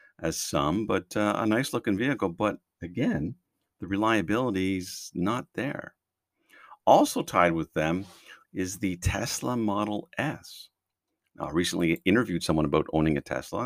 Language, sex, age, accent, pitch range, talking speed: English, male, 50-69, American, 90-120 Hz, 135 wpm